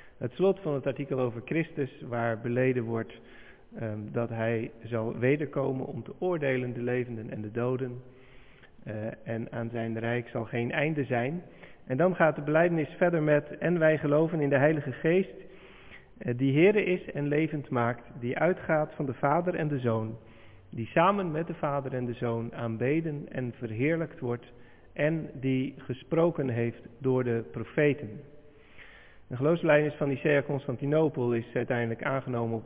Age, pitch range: 40-59, 120-150 Hz